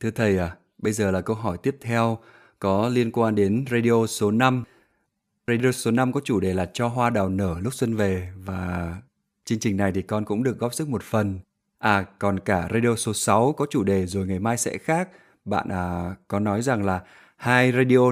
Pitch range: 100-125 Hz